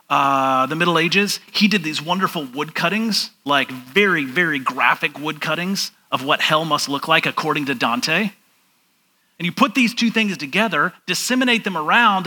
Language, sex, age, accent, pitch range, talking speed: English, male, 40-59, American, 150-205 Hz, 170 wpm